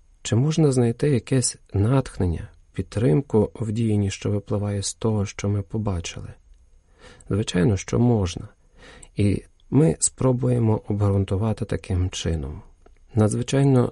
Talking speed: 110 wpm